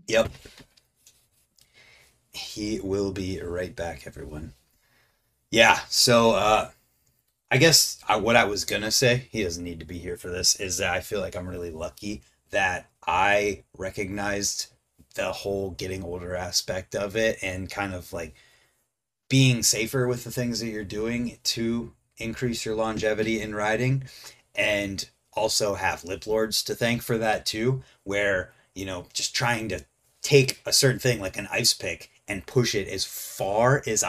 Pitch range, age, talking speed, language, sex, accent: 95-120 Hz, 30-49, 160 wpm, English, male, American